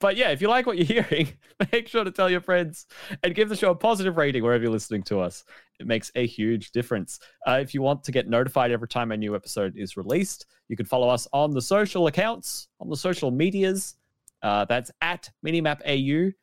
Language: English